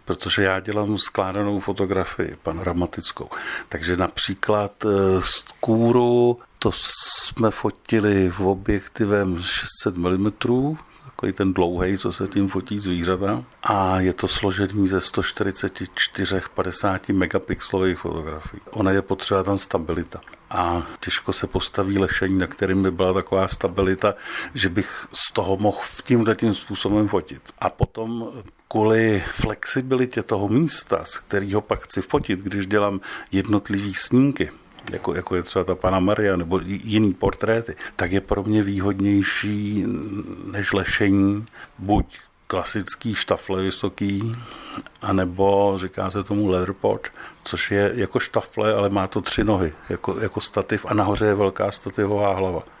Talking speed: 130 wpm